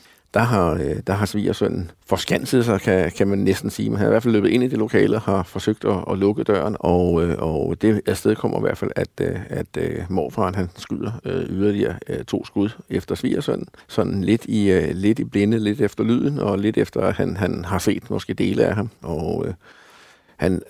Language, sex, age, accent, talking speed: Danish, male, 60-79, native, 205 wpm